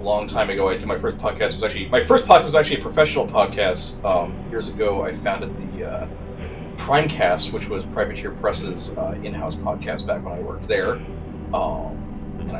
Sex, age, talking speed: male, 30-49, 195 wpm